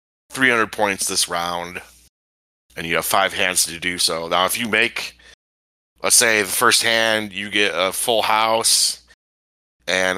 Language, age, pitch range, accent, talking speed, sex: English, 30-49, 75-105 Hz, American, 160 wpm, male